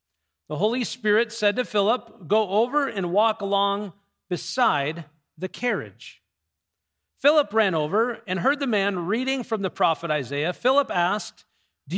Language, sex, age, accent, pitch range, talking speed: English, male, 40-59, American, 140-225 Hz, 145 wpm